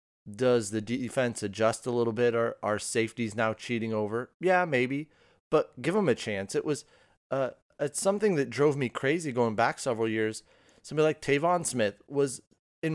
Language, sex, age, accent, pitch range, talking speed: English, male, 30-49, American, 110-140 Hz, 185 wpm